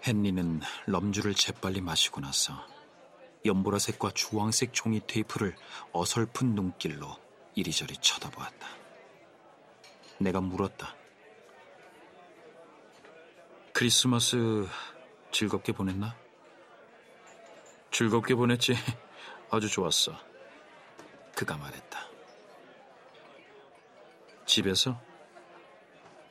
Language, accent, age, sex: Korean, native, 40-59, male